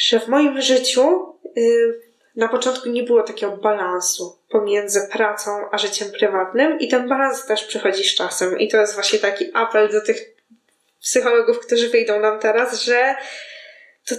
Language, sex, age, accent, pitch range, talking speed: Polish, female, 20-39, native, 215-275 Hz, 155 wpm